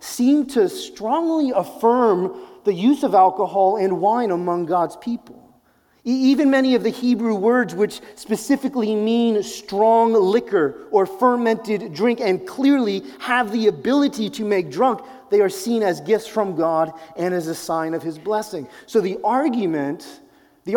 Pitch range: 190-250 Hz